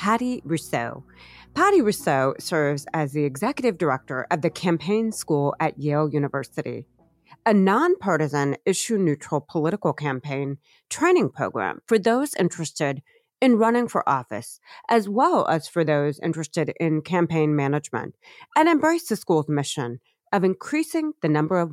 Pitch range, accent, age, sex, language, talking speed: 150-220 Hz, American, 30-49, female, English, 135 wpm